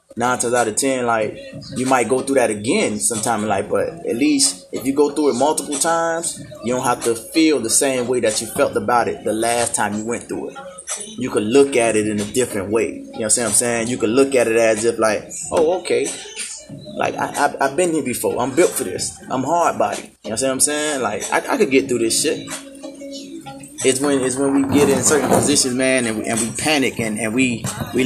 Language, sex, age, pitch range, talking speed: English, male, 20-39, 115-155 Hz, 245 wpm